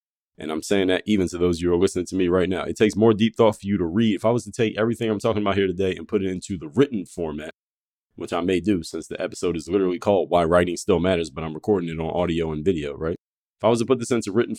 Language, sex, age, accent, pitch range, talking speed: English, male, 30-49, American, 85-105 Hz, 305 wpm